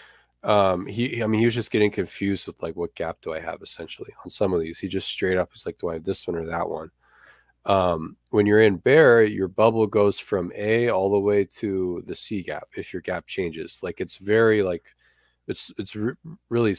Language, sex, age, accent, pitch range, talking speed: English, male, 20-39, American, 90-105 Hz, 225 wpm